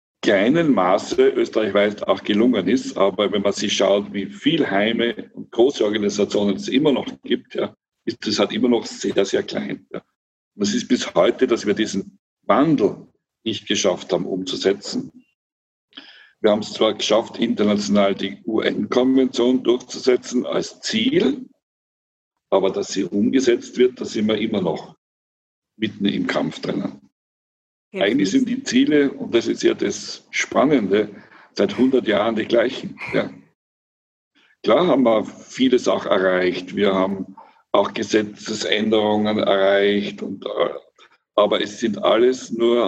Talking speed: 145 wpm